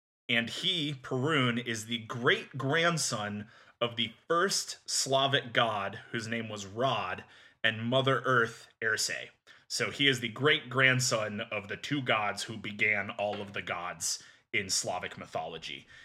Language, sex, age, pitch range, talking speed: English, male, 30-49, 110-135 Hz, 140 wpm